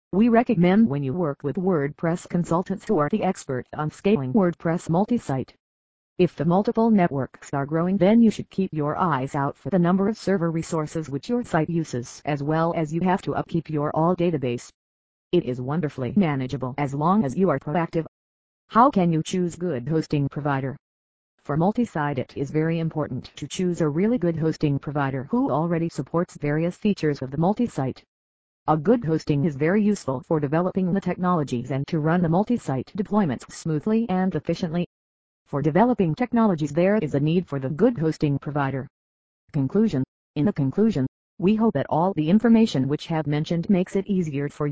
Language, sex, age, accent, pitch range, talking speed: English, female, 40-59, American, 140-185 Hz, 180 wpm